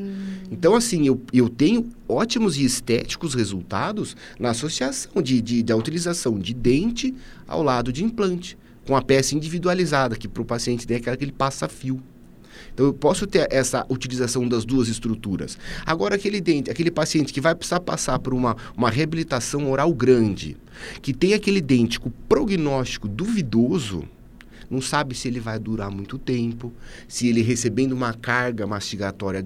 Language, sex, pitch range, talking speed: Portuguese, male, 115-170 Hz, 165 wpm